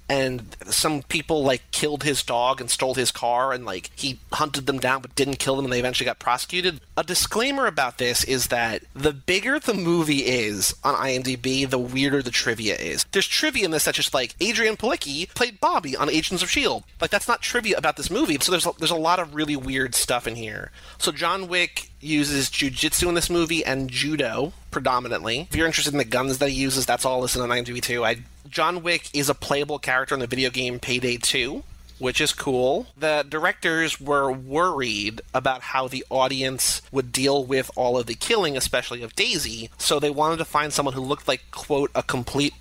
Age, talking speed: 30-49, 210 wpm